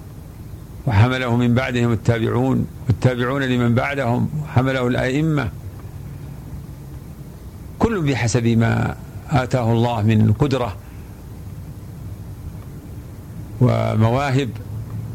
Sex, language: male, Arabic